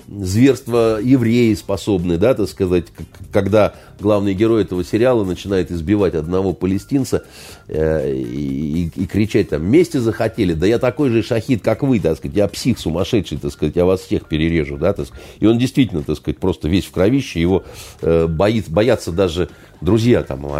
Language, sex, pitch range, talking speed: Russian, male, 85-130 Hz, 170 wpm